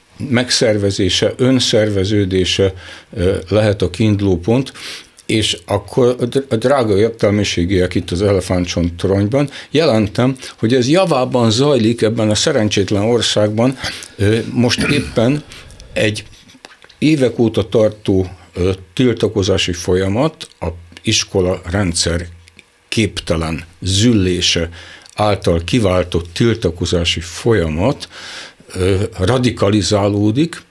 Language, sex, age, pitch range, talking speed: Hungarian, male, 60-79, 95-115 Hz, 80 wpm